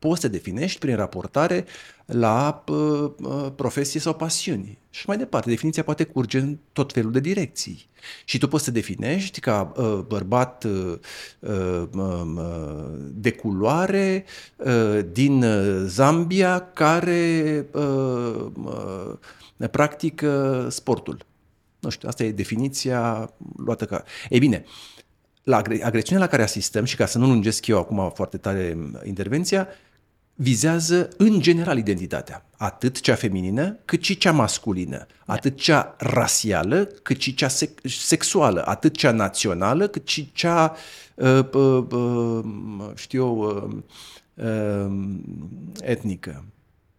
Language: Romanian